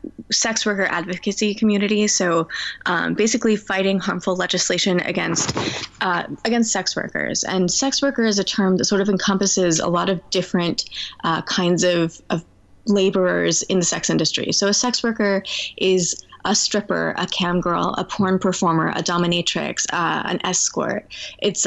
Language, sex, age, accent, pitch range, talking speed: English, female, 20-39, American, 180-210 Hz, 160 wpm